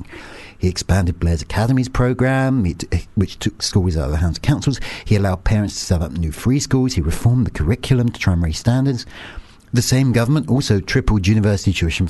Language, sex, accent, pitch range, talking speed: English, male, British, 85-115 Hz, 195 wpm